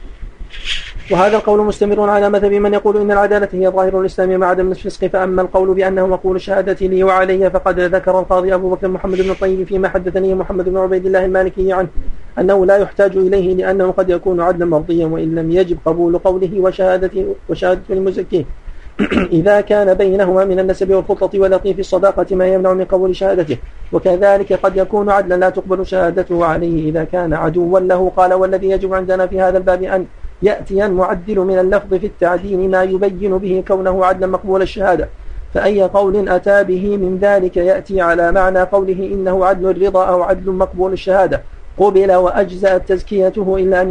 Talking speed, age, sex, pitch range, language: 165 wpm, 40-59, male, 180-190 Hz, Arabic